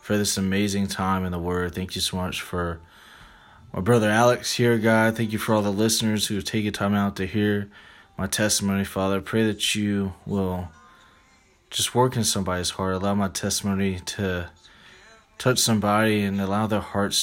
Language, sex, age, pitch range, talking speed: English, male, 20-39, 90-105 Hz, 185 wpm